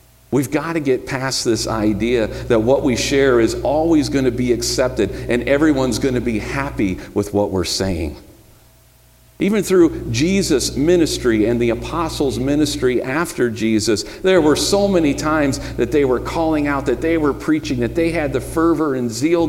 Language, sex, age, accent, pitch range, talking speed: English, male, 50-69, American, 95-140 Hz, 170 wpm